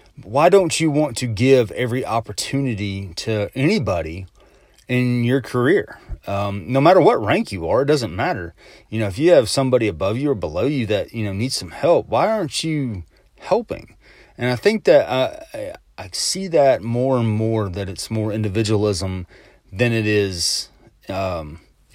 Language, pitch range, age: English, 100-130 Hz, 30-49